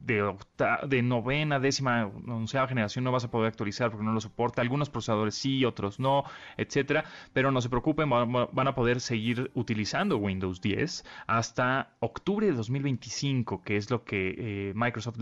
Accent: Mexican